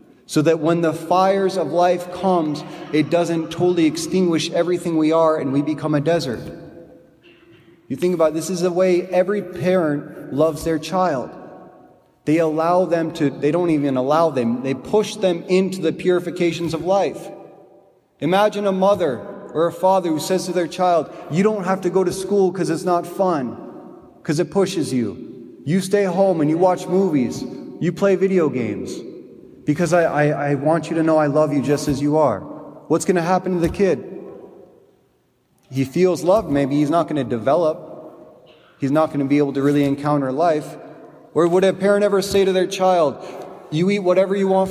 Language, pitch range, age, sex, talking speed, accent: English, 155-185 Hz, 30-49, male, 190 wpm, American